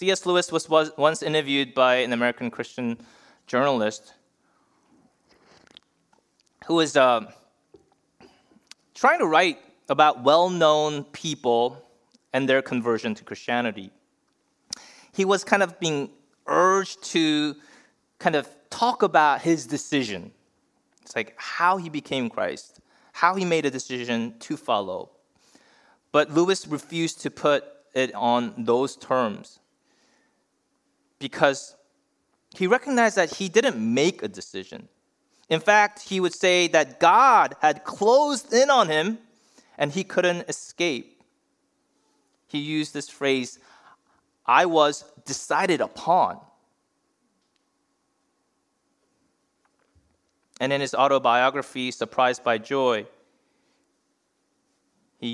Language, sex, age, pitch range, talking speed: English, male, 20-39, 130-190 Hz, 110 wpm